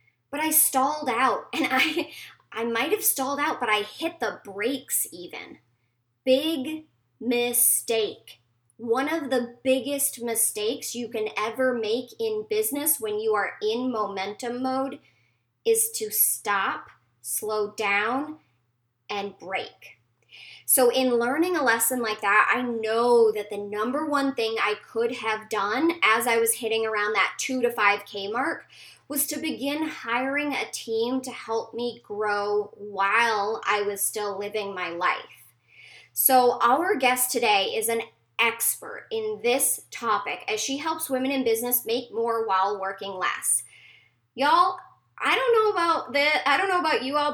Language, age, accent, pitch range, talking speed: English, 10-29, American, 210-285 Hz, 155 wpm